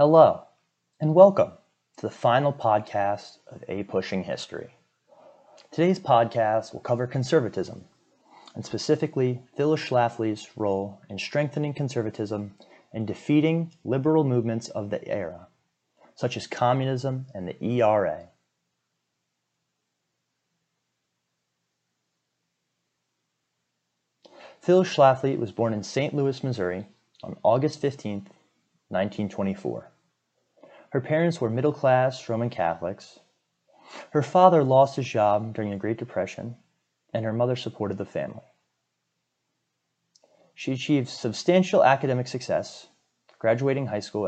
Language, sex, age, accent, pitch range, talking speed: English, male, 30-49, American, 105-140 Hz, 105 wpm